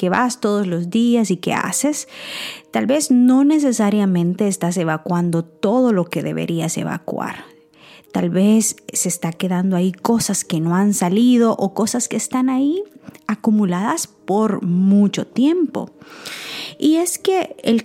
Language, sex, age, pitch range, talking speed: Spanish, female, 30-49, 180-250 Hz, 145 wpm